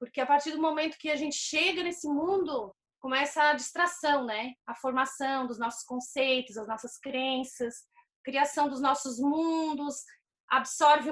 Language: Portuguese